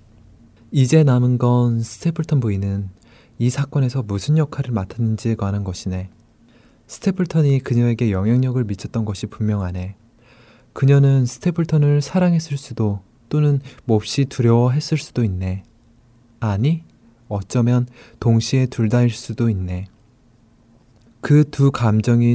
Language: Korean